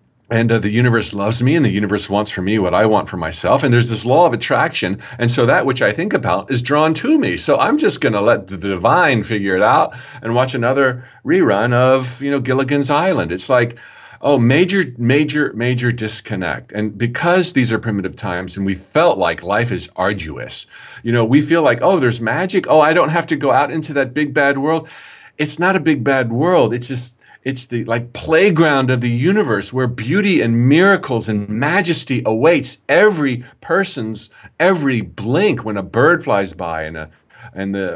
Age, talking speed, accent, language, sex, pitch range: 50-69, 200 wpm, American, English, male, 110-145 Hz